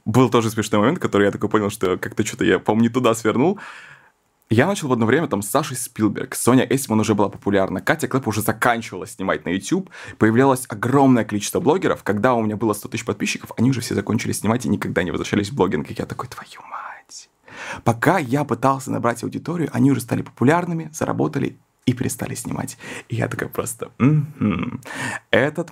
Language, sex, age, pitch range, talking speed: Russian, male, 20-39, 105-135 Hz, 190 wpm